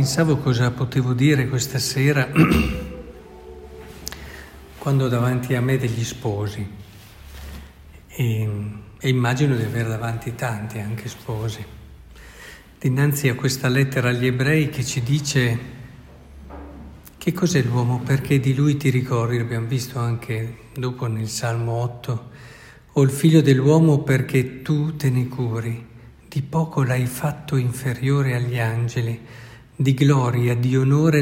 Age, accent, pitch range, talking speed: 50-69, native, 120-145 Hz, 125 wpm